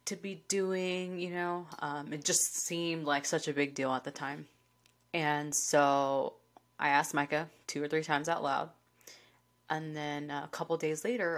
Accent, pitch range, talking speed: American, 145-175 Hz, 180 wpm